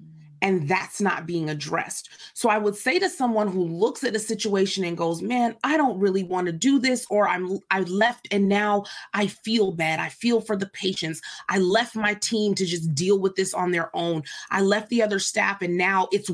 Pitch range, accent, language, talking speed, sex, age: 175-215 Hz, American, English, 215 wpm, female, 30-49